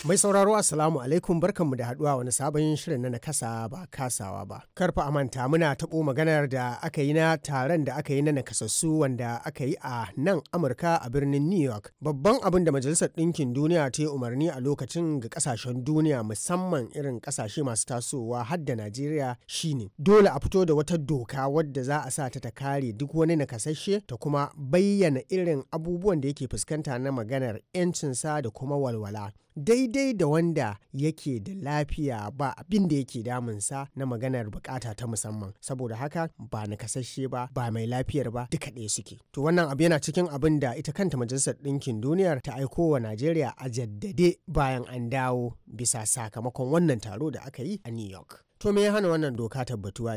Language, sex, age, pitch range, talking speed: English, male, 30-49, 120-155 Hz, 160 wpm